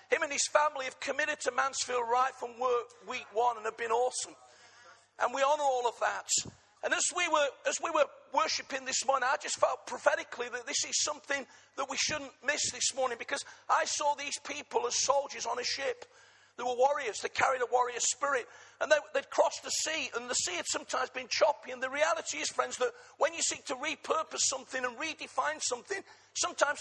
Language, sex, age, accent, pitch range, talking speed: English, male, 40-59, British, 255-315 Hz, 205 wpm